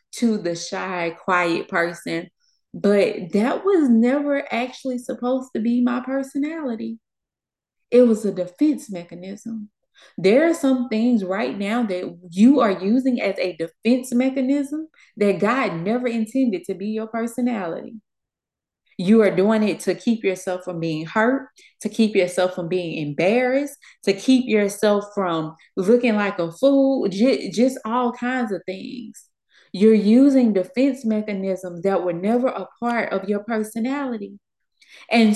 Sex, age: female, 20-39